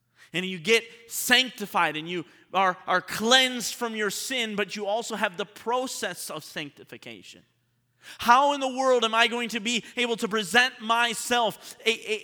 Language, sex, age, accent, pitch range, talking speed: English, male, 30-49, American, 135-215 Hz, 160 wpm